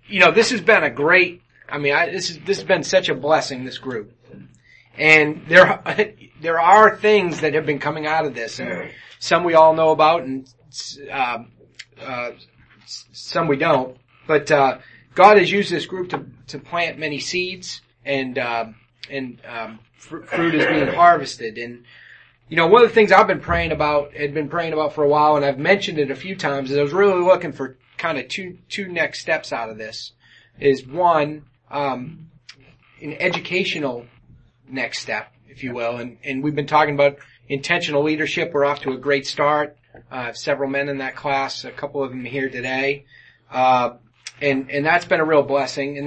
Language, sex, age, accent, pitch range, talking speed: English, male, 30-49, American, 130-165 Hz, 195 wpm